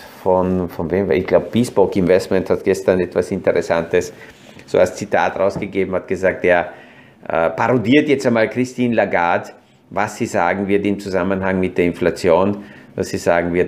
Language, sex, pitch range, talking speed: German, male, 90-110 Hz, 160 wpm